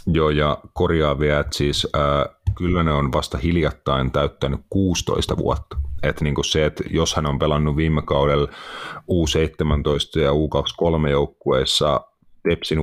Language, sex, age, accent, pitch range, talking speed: Finnish, male, 30-49, native, 70-80 Hz, 130 wpm